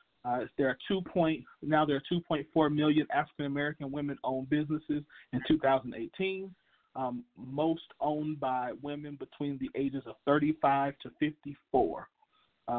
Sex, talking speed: male, 125 wpm